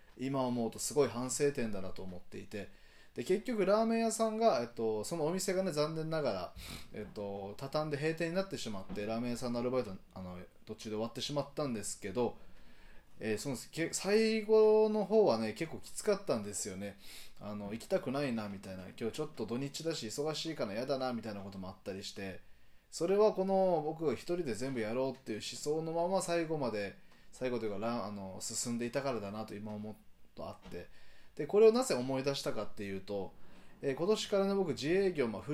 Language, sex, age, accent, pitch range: Japanese, male, 20-39, native, 105-170 Hz